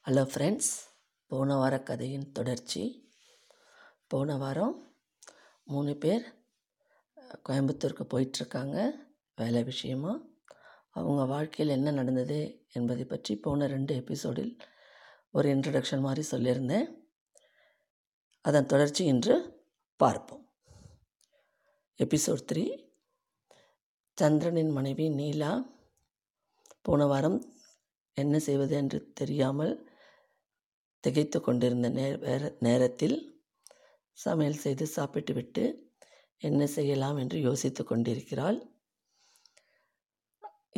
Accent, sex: native, female